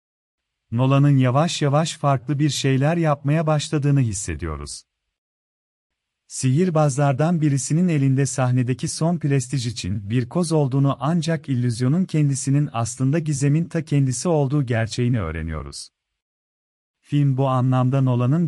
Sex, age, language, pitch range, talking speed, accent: male, 40-59, Turkish, 125-150 Hz, 105 wpm, native